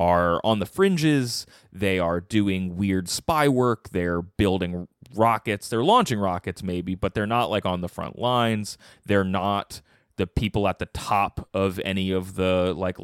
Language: English